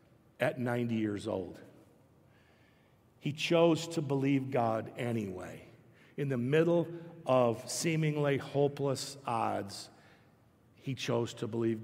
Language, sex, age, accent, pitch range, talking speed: English, male, 50-69, American, 130-160 Hz, 105 wpm